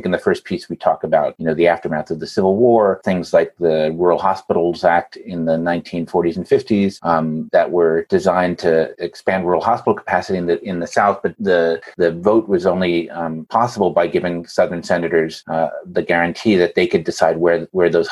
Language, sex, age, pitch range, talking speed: English, male, 30-49, 80-100 Hz, 205 wpm